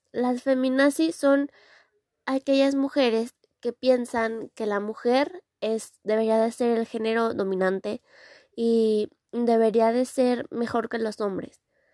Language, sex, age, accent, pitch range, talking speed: Spanish, female, 20-39, Mexican, 215-260 Hz, 125 wpm